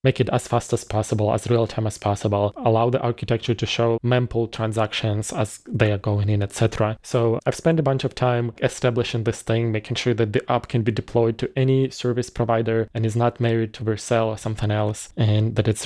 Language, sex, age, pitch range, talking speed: English, male, 20-39, 110-125 Hz, 220 wpm